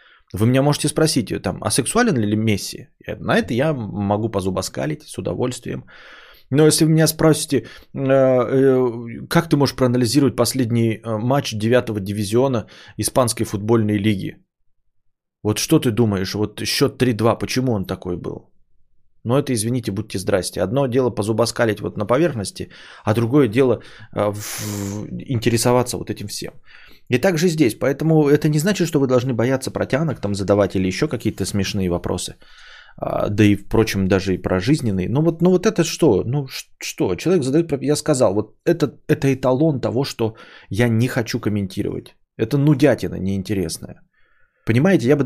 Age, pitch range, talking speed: 20-39, 105-140 Hz, 150 wpm